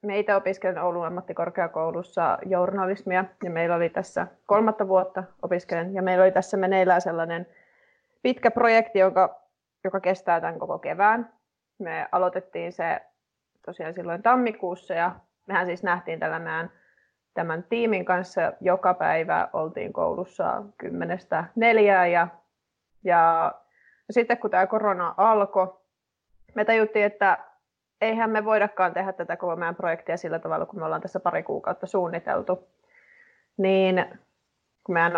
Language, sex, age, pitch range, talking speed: Finnish, female, 30-49, 175-205 Hz, 125 wpm